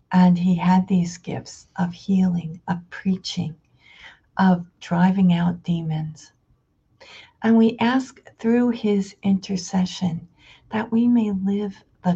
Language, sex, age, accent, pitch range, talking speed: English, female, 50-69, American, 170-190 Hz, 120 wpm